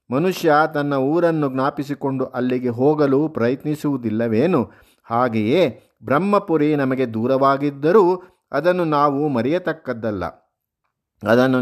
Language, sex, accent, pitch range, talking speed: Kannada, male, native, 135-160 Hz, 75 wpm